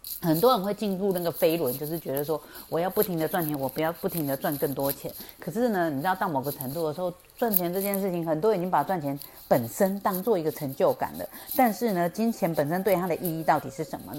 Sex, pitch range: female, 145-185 Hz